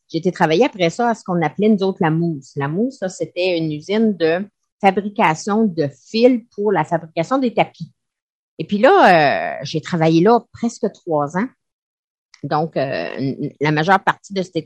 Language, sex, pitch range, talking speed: French, female, 165-220 Hz, 185 wpm